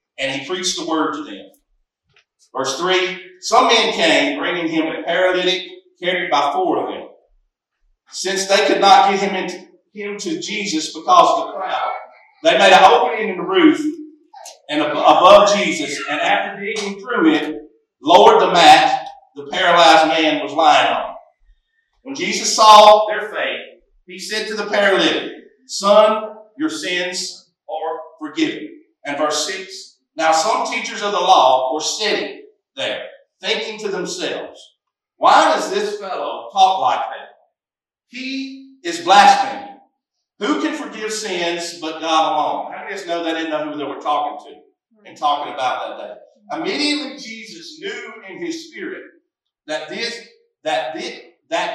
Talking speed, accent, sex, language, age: 155 wpm, American, male, English, 50-69